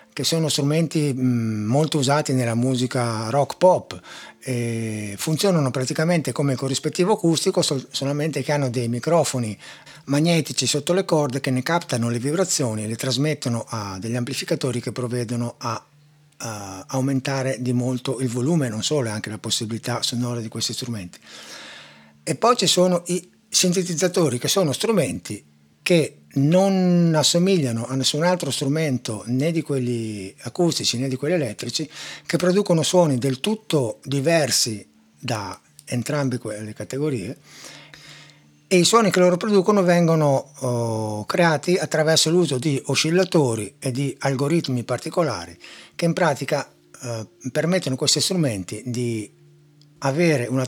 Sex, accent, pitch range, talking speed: male, native, 120-160 Hz, 135 wpm